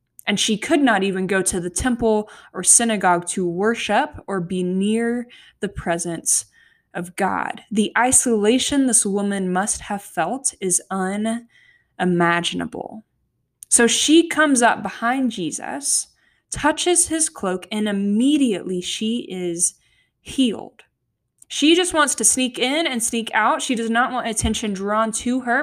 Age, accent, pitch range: 10-29, American, 195-260 Hz